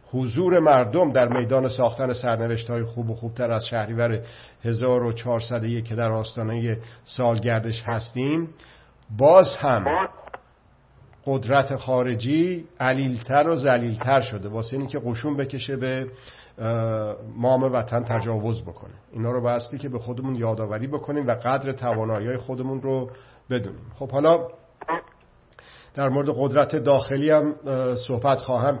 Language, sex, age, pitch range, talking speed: Persian, male, 50-69, 115-135 Hz, 125 wpm